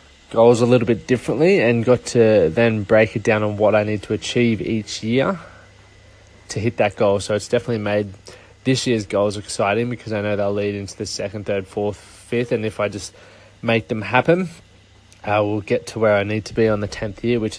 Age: 20-39